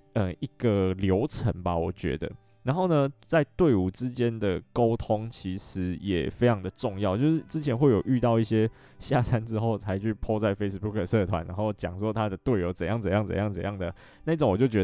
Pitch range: 95-115 Hz